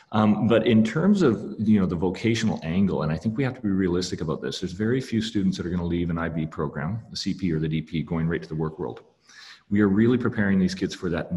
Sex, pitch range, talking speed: male, 85-105 Hz, 270 wpm